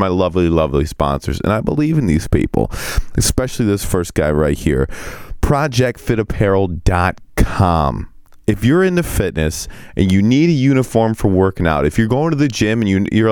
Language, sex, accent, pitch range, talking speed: English, male, American, 90-120 Hz, 170 wpm